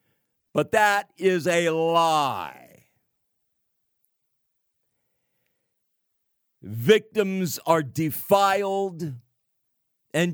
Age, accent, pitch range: 50-69, American, 145-195 Hz